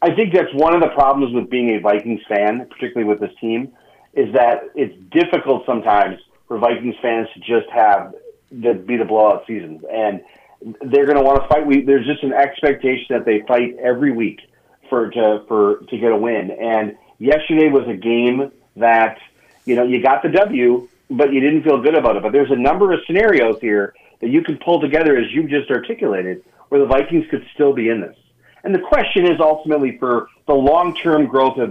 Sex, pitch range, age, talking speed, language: male, 115-150 Hz, 40-59, 205 wpm, English